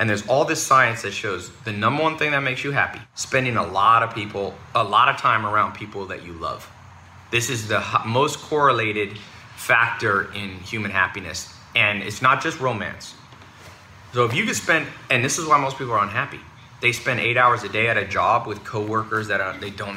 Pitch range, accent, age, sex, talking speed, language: 100-120 Hz, American, 30-49, male, 210 wpm, English